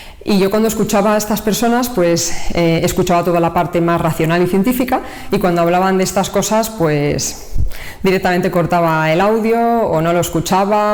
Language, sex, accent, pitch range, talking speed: Spanish, female, Spanish, 155-195 Hz, 175 wpm